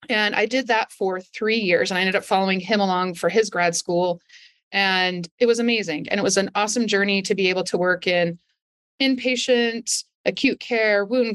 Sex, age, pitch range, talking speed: female, 30-49, 185-235 Hz, 200 wpm